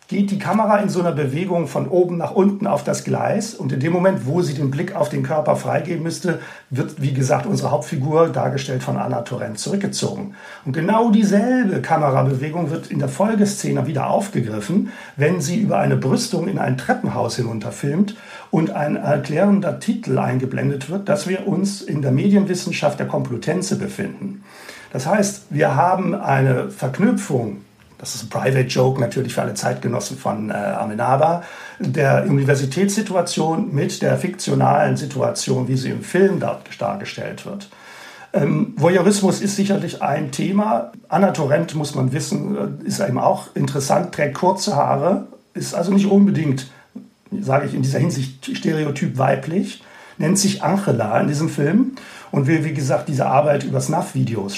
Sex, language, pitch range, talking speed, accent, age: male, German, 140-200 Hz, 160 wpm, German, 60-79